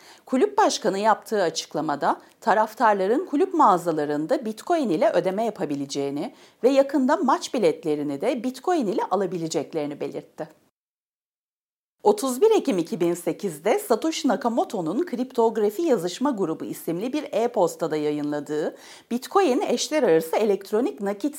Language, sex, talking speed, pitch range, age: Turkish, female, 105 wpm, 170-285 Hz, 40-59